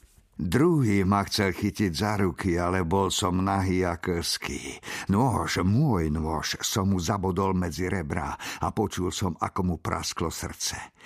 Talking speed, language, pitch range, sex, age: 145 wpm, Slovak, 85-105 Hz, male, 60-79